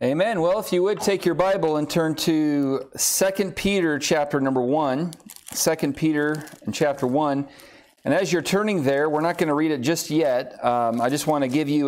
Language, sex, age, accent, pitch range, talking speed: English, male, 40-59, American, 120-155 Hz, 200 wpm